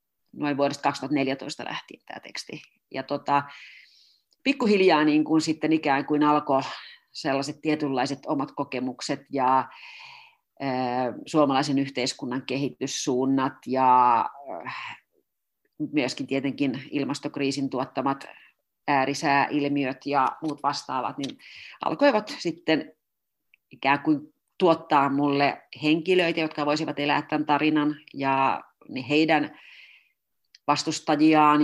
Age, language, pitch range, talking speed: 40-59, Finnish, 140-165 Hz, 95 wpm